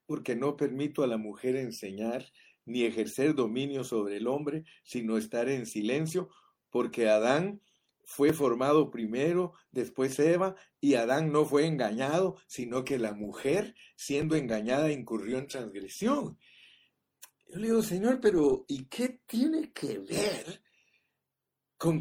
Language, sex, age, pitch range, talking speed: Spanish, male, 50-69, 125-185 Hz, 135 wpm